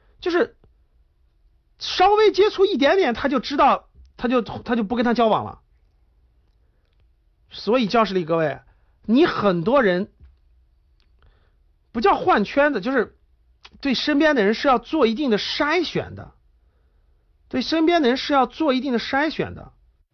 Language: Chinese